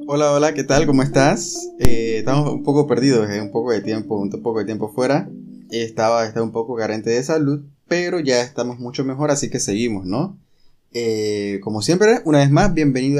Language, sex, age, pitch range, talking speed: Spanish, male, 20-39, 120-150 Hz, 195 wpm